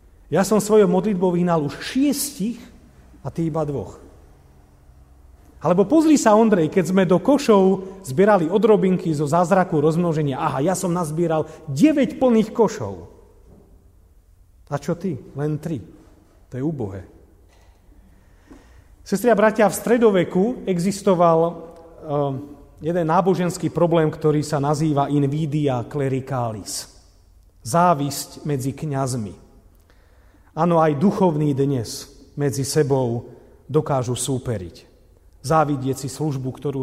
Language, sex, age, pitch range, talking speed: Slovak, male, 40-59, 125-185 Hz, 110 wpm